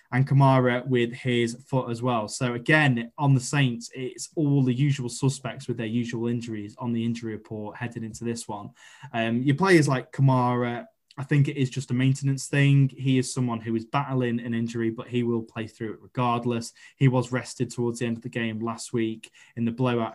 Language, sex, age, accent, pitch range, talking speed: English, male, 10-29, British, 120-140 Hz, 210 wpm